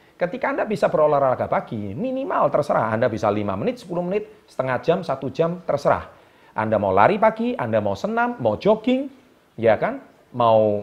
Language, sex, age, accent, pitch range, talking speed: Indonesian, male, 40-59, native, 130-210 Hz, 165 wpm